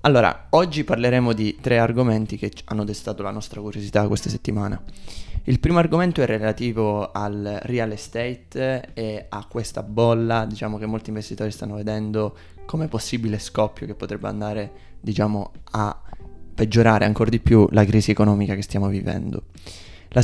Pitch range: 105-120 Hz